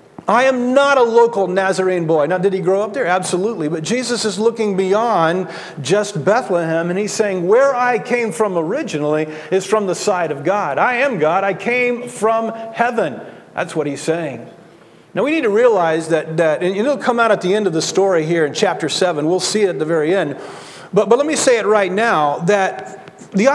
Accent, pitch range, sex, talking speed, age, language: American, 180-250 Hz, male, 215 wpm, 40-59, English